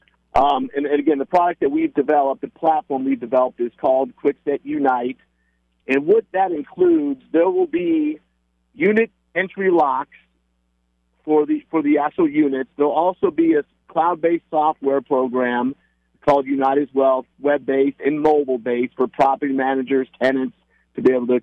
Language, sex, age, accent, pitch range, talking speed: English, male, 50-69, American, 125-155 Hz, 155 wpm